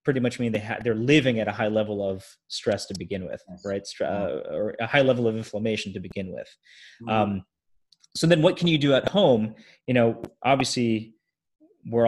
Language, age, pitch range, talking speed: English, 30-49, 105-120 Hz, 205 wpm